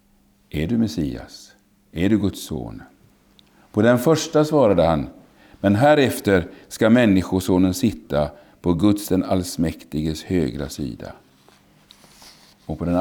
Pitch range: 80-110 Hz